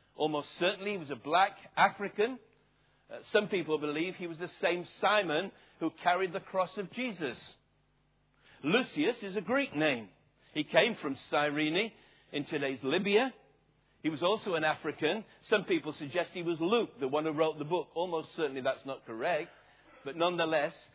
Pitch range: 155-205 Hz